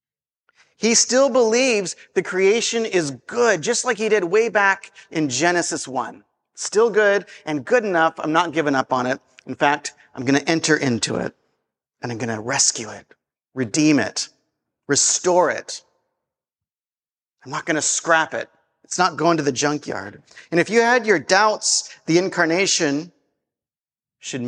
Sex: male